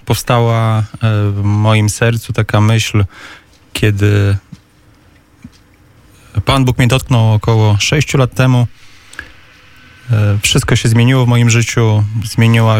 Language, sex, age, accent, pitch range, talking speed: Polish, male, 20-39, native, 105-120 Hz, 105 wpm